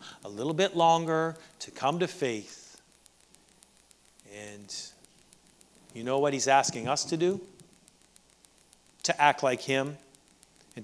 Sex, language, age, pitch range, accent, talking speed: male, English, 40-59, 150-250 Hz, American, 120 wpm